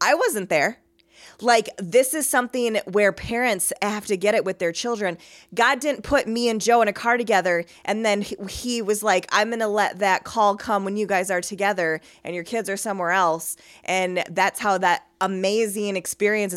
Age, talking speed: 20-39, 205 wpm